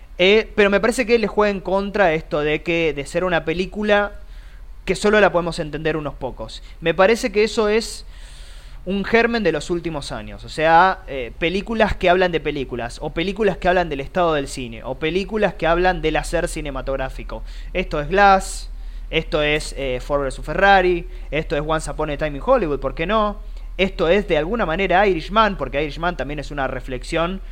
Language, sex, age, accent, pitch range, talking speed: Spanish, male, 20-39, Argentinian, 140-200 Hz, 195 wpm